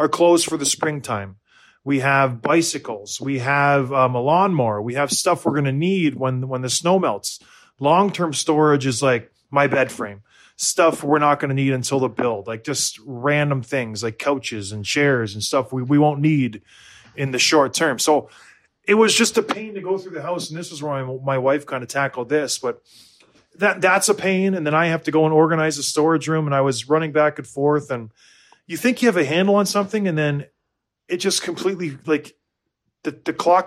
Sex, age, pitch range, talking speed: male, 30-49, 135-175 Hz, 215 wpm